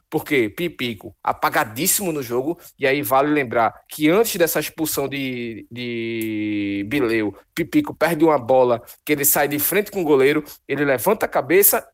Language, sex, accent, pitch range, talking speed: Portuguese, male, Brazilian, 135-195 Hz, 160 wpm